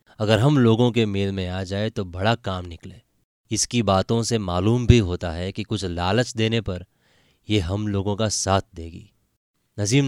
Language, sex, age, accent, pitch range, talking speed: Hindi, male, 20-39, native, 95-115 Hz, 185 wpm